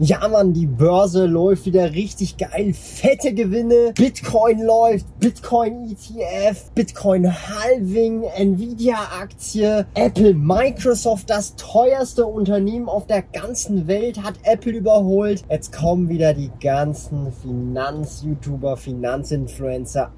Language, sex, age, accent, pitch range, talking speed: German, male, 20-39, German, 135-200 Hz, 115 wpm